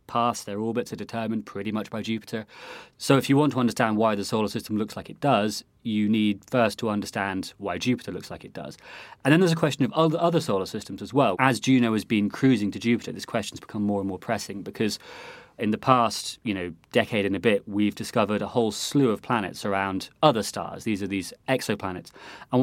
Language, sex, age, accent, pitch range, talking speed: English, male, 30-49, British, 100-125 Hz, 225 wpm